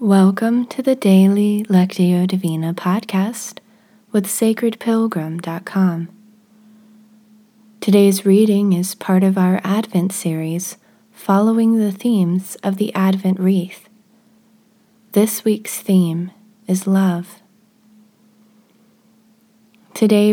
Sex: female